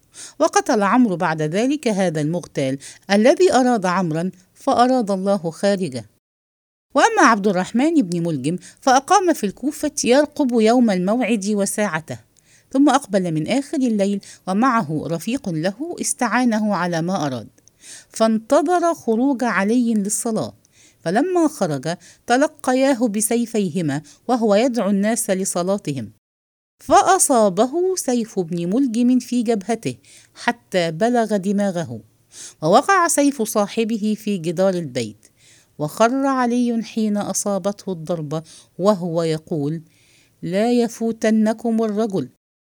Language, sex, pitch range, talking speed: English, female, 170-245 Hz, 105 wpm